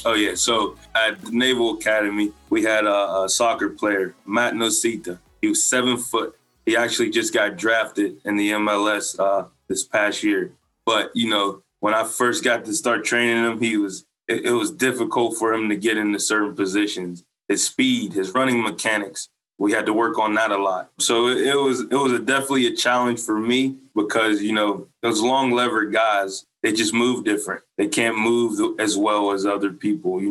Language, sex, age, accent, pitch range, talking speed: English, male, 20-39, American, 100-120 Hz, 195 wpm